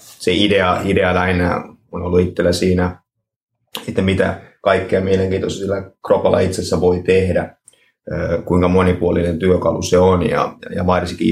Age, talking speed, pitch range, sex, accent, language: 30-49, 120 wpm, 85-95 Hz, male, native, Finnish